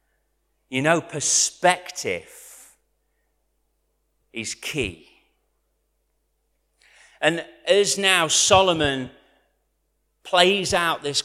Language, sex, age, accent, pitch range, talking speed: English, male, 40-59, British, 105-155 Hz, 65 wpm